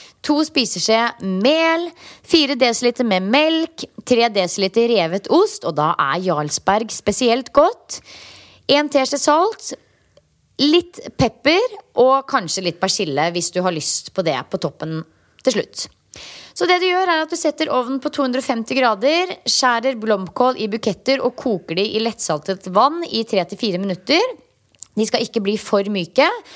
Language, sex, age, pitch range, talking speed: English, female, 20-39, 195-280 Hz, 160 wpm